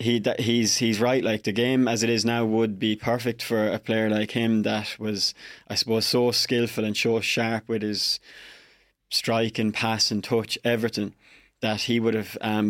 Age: 20-39